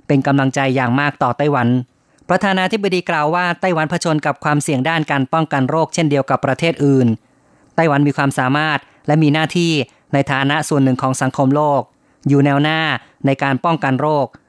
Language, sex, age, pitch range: Thai, female, 30-49, 135-155 Hz